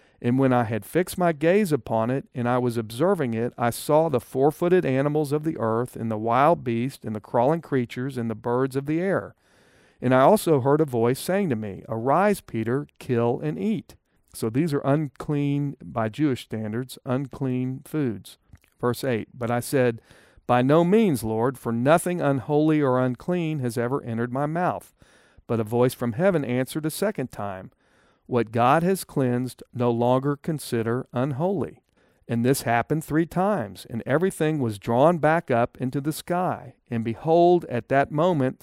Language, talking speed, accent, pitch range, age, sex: English, 175 wpm, American, 120-160 Hz, 50-69, male